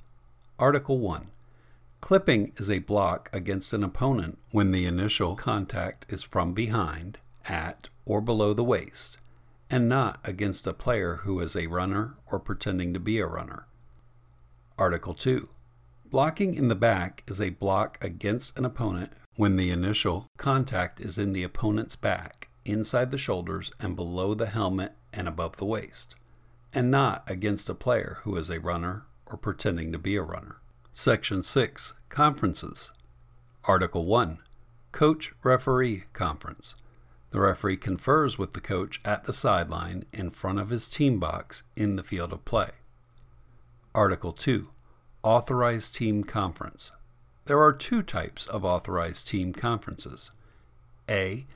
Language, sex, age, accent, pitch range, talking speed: English, male, 50-69, American, 90-120 Hz, 145 wpm